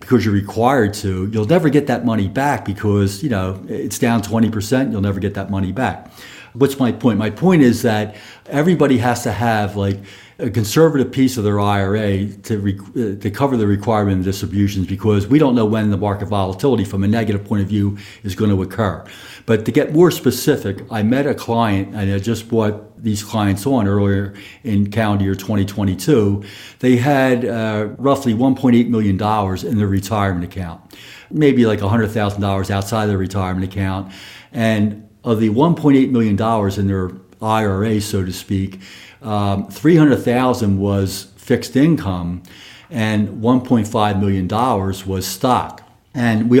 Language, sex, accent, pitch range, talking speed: English, male, American, 100-120 Hz, 170 wpm